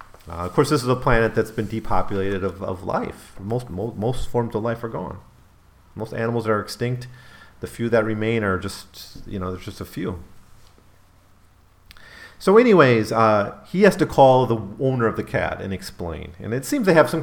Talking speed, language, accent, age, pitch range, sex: 195 wpm, English, American, 40-59, 95-125 Hz, male